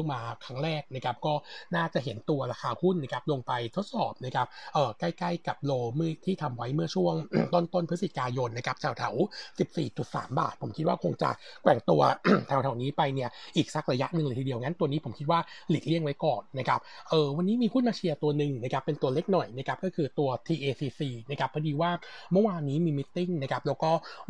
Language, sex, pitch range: Thai, male, 135-170 Hz